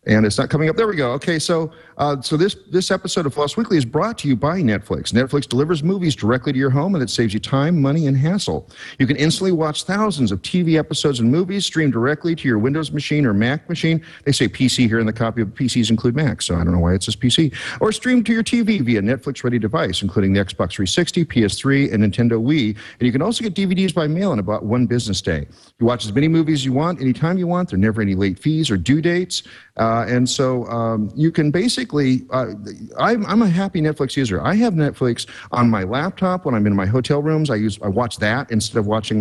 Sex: male